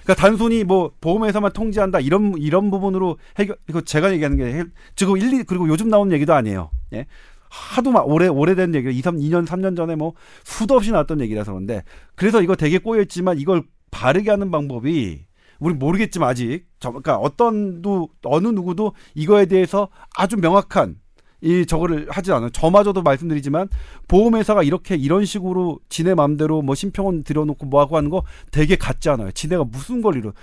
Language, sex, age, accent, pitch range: Korean, male, 40-59, native, 145-195 Hz